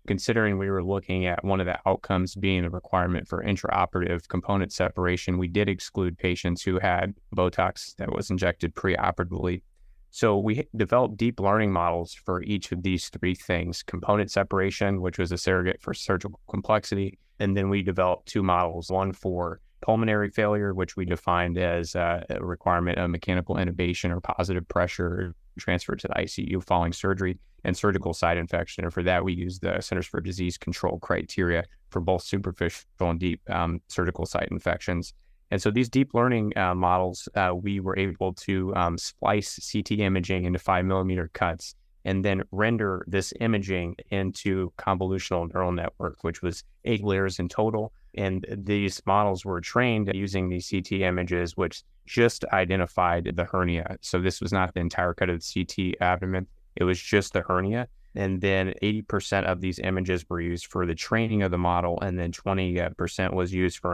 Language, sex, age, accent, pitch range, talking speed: English, male, 20-39, American, 90-100 Hz, 175 wpm